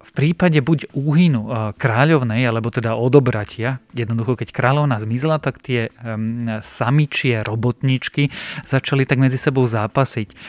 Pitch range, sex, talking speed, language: 115-135 Hz, male, 125 wpm, Slovak